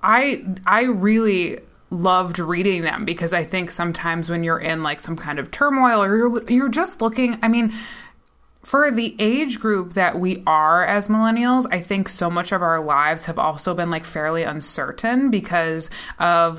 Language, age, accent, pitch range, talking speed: English, 20-39, American, 165-215 Hz, 175 wpm